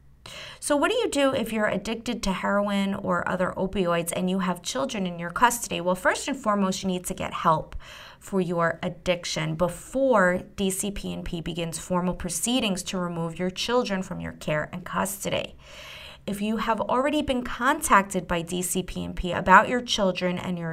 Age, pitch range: 30-49, 180-225 Hz